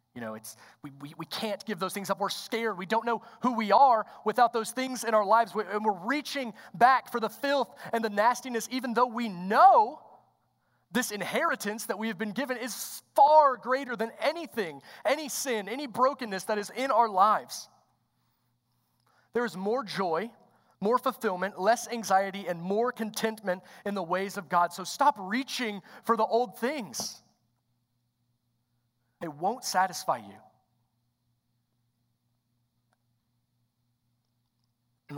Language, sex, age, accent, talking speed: English, male, 30-49, American, 150 wpm